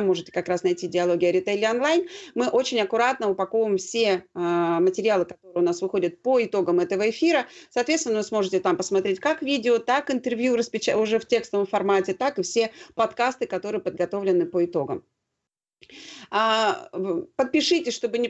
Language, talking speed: Russian, 150 wpm